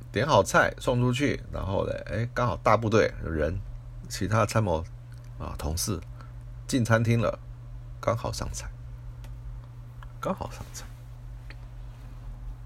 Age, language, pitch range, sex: 60-79, Chinese, 110-120 Hz, male